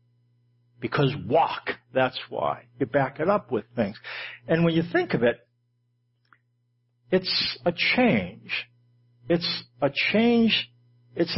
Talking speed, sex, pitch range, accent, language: 120 wpm, male, 120-185 Hz, American, English